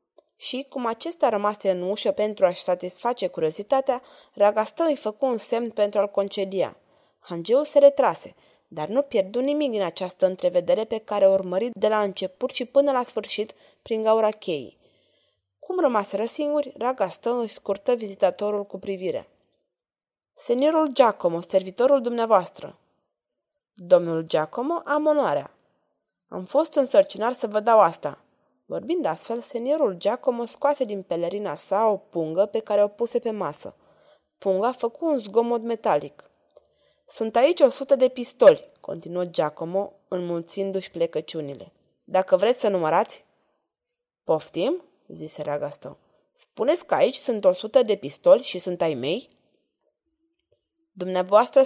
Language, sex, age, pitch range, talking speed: Romanian, female, 20-39, 190-275 Hz, 135 wpm